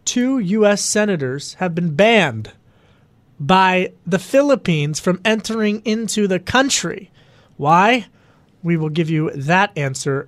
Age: 30-49